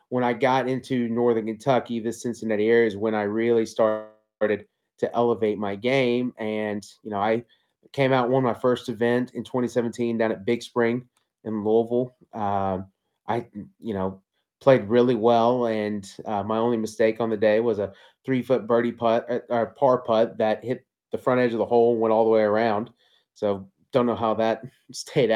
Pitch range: 110-120 Hz